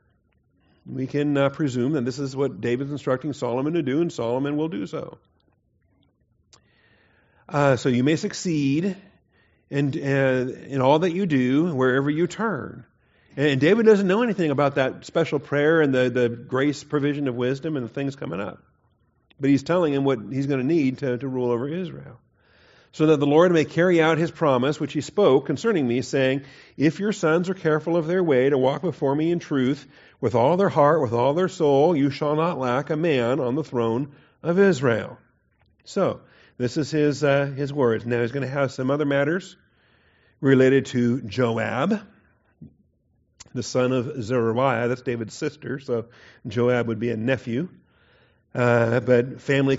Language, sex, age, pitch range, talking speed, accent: English, male, 40-59, 120-150 Hz, 180 wpm, American